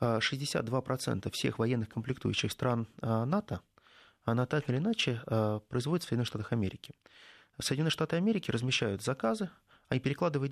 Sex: male